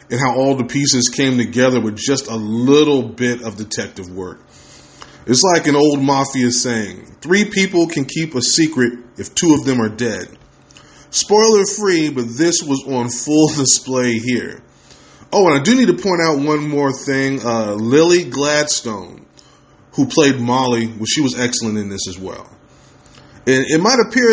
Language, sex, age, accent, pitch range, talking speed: English, male, 20-39, American, 115-145 Hz, 175 wpm